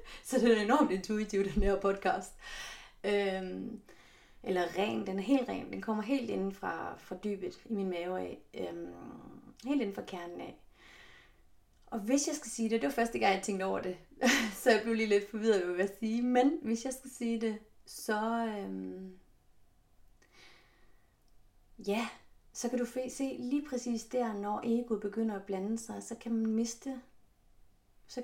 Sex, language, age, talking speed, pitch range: female, Danish, 30-49, 180 wpm, 205-265 Hz